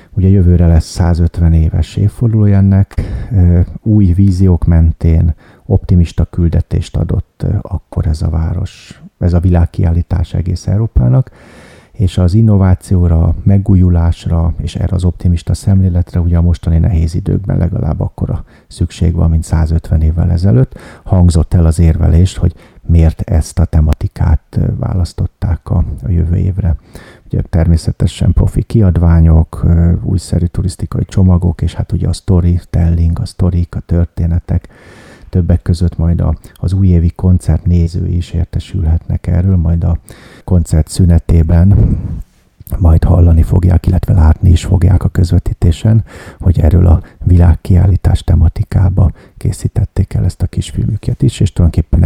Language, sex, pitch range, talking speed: Hungarian, male, 85-95 Hz, 125 wpm